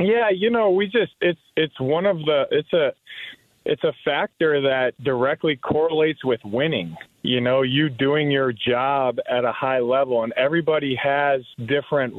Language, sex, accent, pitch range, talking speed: English, male, American, 130-155 Hz, 155 wpm